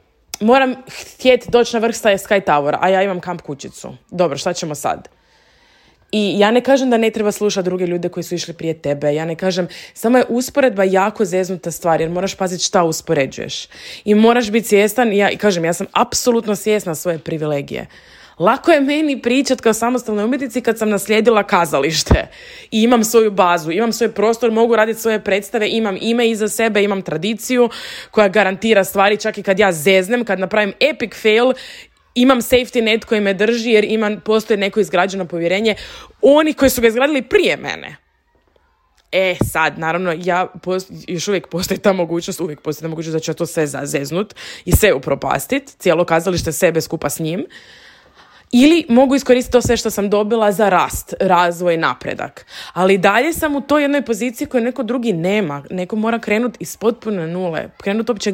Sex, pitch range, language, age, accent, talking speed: female, 175-230 Hz, Croatian, 20-39, native, 180 wpm